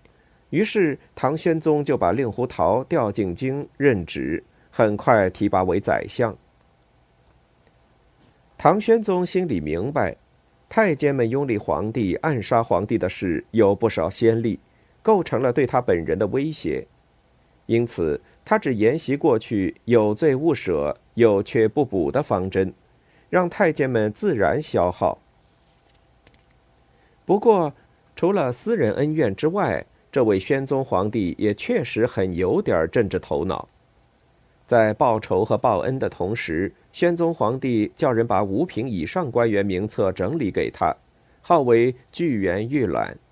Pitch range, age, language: 105-160 Hz, 50-69, Chinese